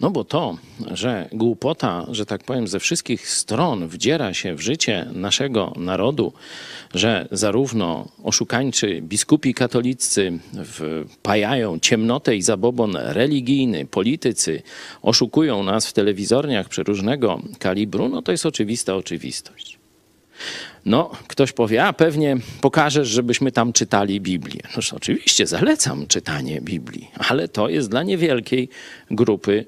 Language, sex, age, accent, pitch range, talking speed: Polish, male, 40-59, native, 95-135 Hz, 120 wpm